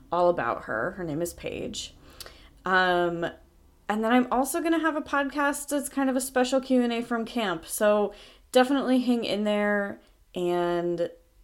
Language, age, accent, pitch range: English, 20-39, American, 165-210 Hz